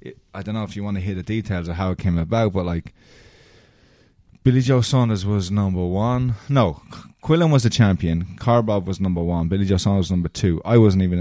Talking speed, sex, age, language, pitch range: 220 wpm, male, 20-39, English, 85-110 Hz